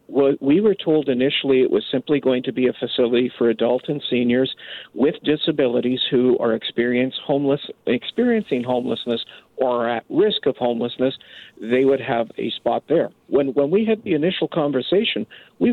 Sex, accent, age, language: male, American, 50-69, English